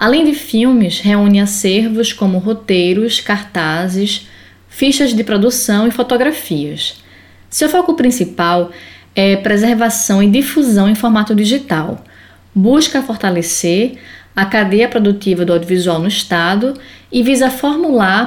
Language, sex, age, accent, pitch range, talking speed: Portuguese, female, 20-39, Brazilian, 200-255 Hz, 115 wpm